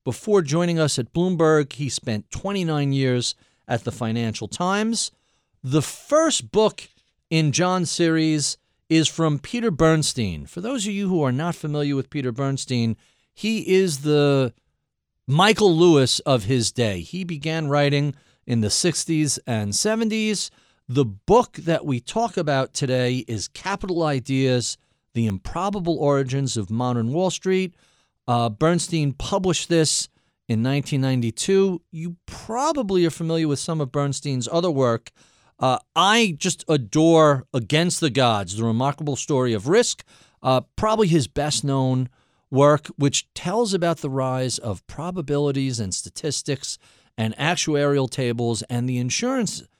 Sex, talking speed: male, 140 wpm